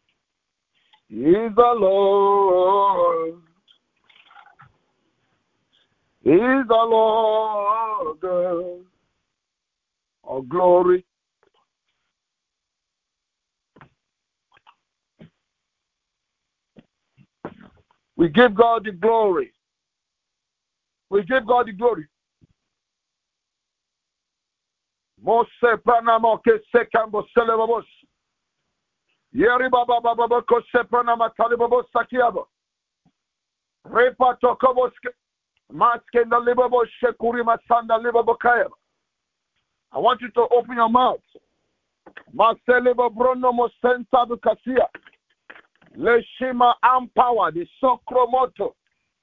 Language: English